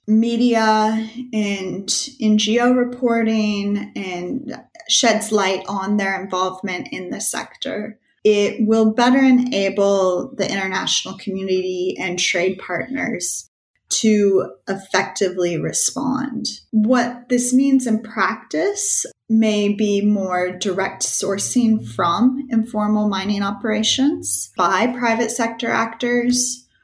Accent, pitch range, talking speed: American, 195-235 Hz, 100 wpm